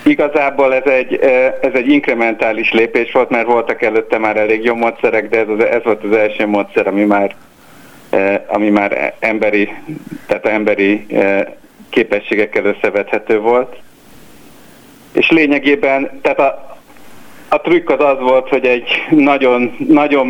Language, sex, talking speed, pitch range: Hungarian, male, 120 wpm, 105-130 Hz